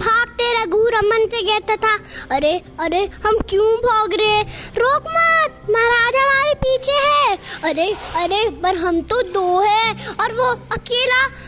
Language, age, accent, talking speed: Hindi, 20-39, native, 130 wpm